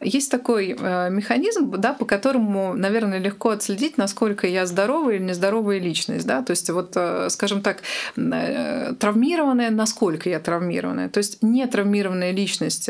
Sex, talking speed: female, 135 wpm